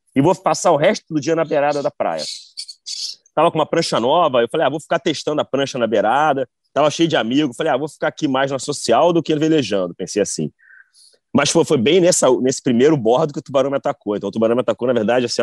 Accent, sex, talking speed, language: Brazilian, male, 250 wpm, English